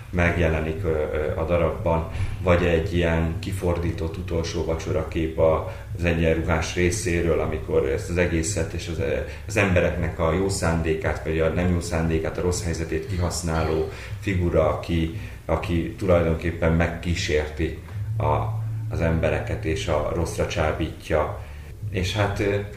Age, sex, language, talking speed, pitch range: 30-49, male, Hungarian, 120 wpm, 80-95 Hz